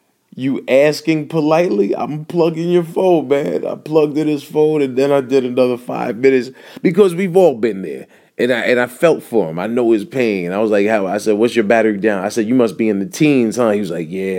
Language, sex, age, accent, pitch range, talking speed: English, male, 30-49, American, 115-140 Hz, 245 wpm